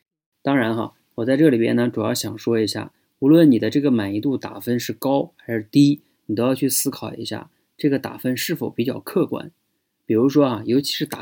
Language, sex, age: Chinese, male, 20-39